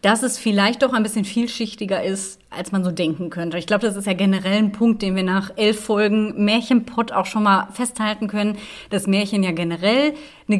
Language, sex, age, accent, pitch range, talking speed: German, female, 30-49, German, 190-225 Hz, 210 wpm